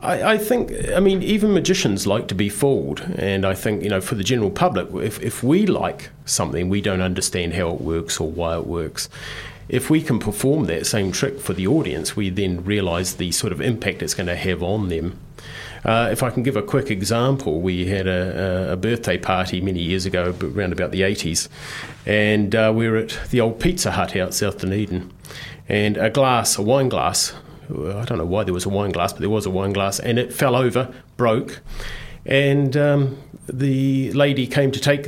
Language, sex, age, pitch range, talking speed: English, male, 30-49, 90-130 Hz, 210 wpm